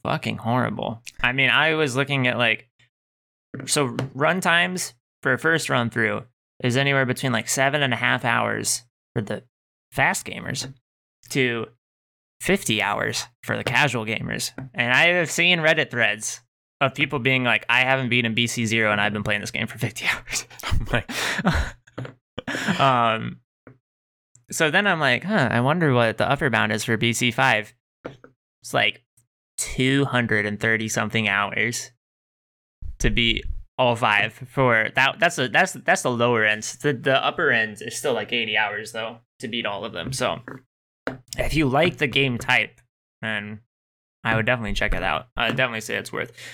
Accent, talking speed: American, 165 wpm